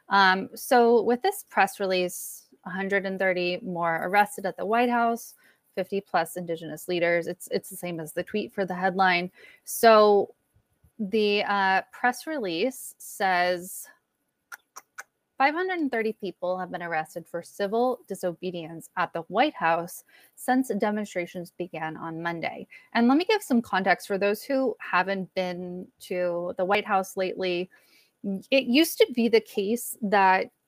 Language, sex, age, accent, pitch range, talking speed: English, female, 20-39, American, 185-240 Hz, 145 wpm